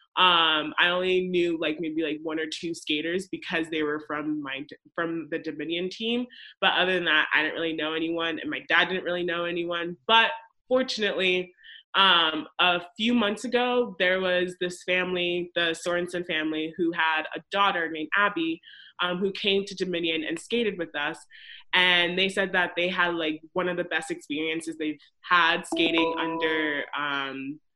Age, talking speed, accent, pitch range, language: 20-39, 175 wpm, American, 160-185 Hz, English